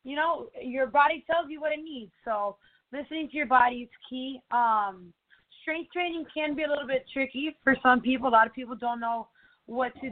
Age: 20-39